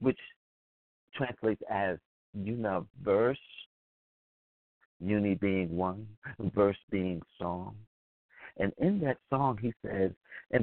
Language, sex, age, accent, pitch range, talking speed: English, male, 50-69, American, 90-130 Hz, 95 wpm